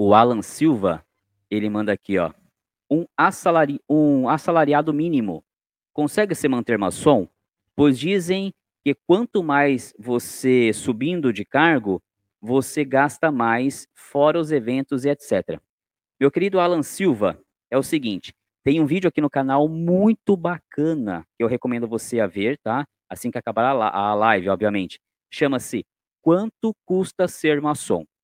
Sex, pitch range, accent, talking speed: male, 115-165 Hz, Brazilian, 140 wpm